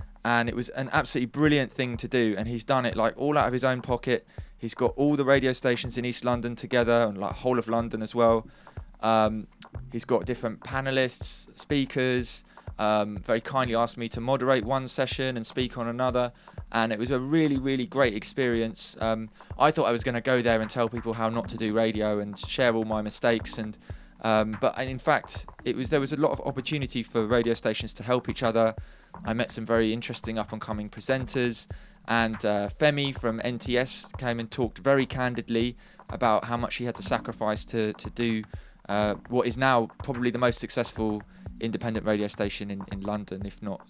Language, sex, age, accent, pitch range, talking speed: English, male, 20-39, British, 110-125 Hz, 205 wpm